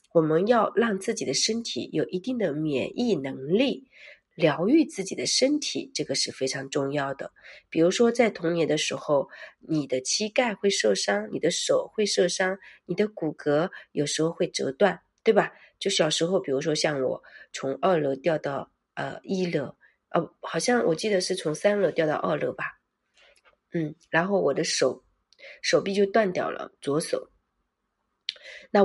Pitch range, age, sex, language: 155-205 Hz, 30-49, female, Chinese